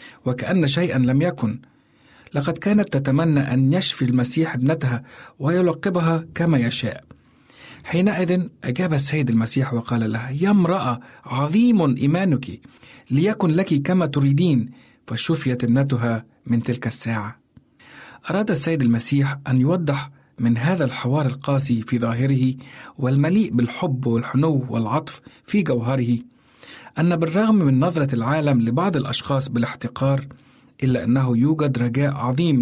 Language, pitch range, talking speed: Arabic, 125-155 Hz, 115 wpm